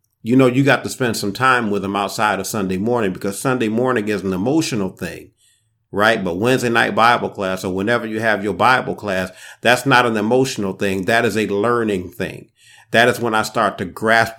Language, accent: English, American